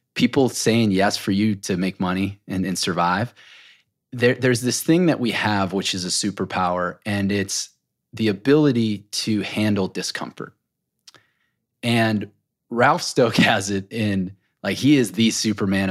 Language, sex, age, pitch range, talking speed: English, male, 30-49, 95-115 Hz, 145 wpm